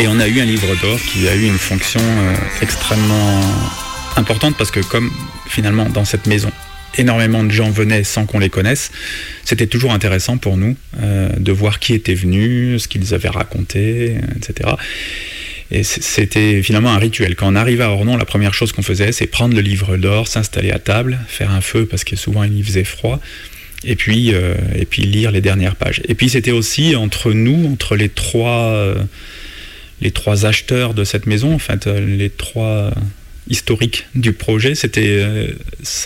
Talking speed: 185 wpm